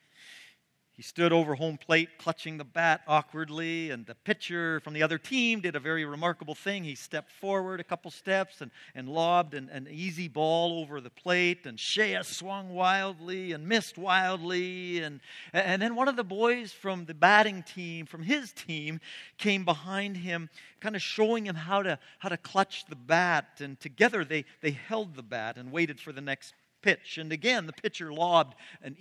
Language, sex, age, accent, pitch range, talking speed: English, male, 50-69, American, 155-195 Hz, 190 wpm